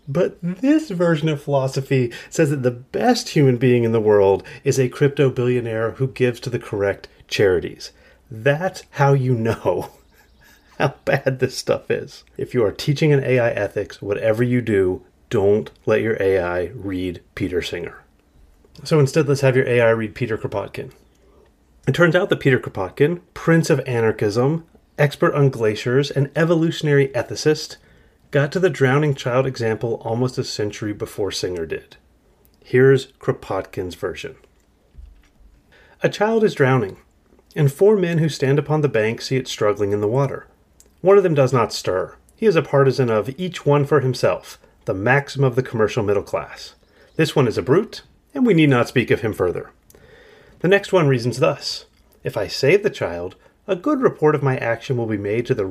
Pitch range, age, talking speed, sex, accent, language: 115-155 Hz, 30-49, 175 wpm, male, American, English